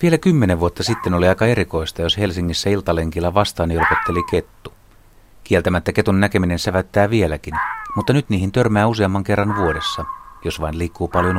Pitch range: 90-115 Hz